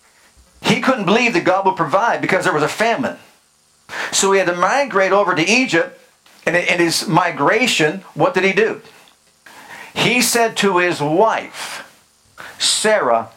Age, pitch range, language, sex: 50-69, 165-225 Hz, English, male